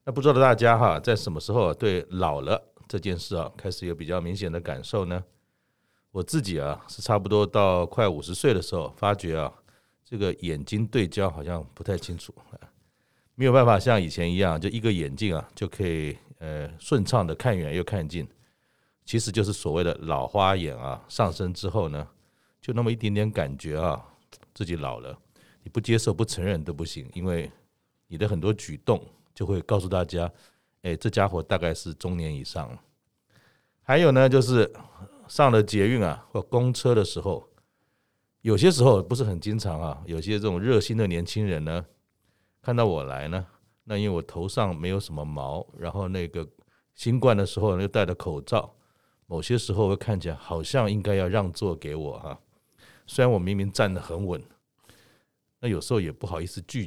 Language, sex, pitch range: Chinese, male, 85-110 Hz